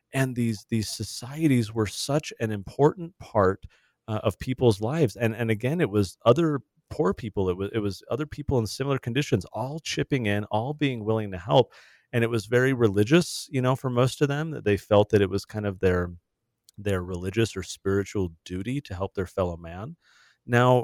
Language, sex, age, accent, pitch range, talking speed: English, male, 30-49, American, 100-125 Hz, 200 wpm